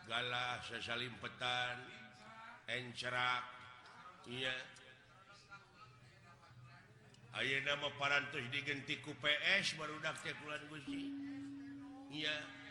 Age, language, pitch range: 60-79, Indonesian, 130-155 Hz